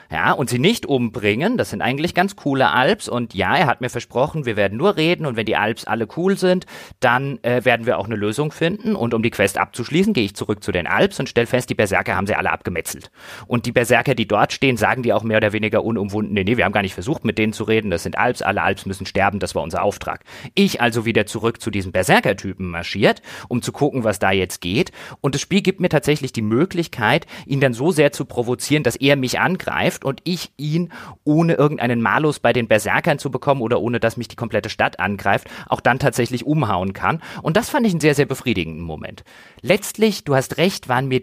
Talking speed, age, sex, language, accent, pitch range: 235 wpm, 30-49, male, German, German, 110-155 Hz